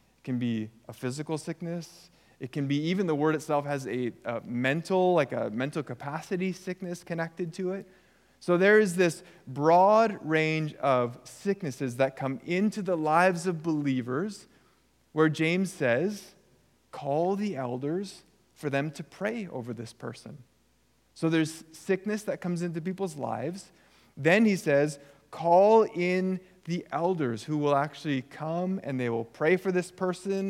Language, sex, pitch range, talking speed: English, male, 140-175 Hz, 155 wpm